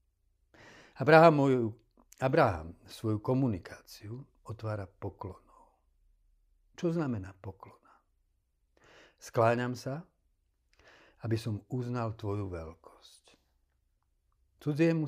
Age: 60-79